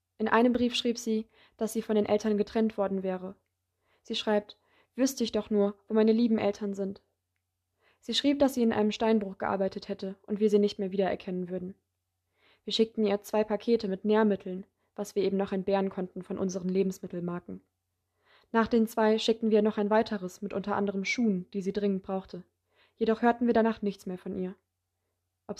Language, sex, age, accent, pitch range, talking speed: German, female, 20-39, German, 185-220 Hz, 190 wpm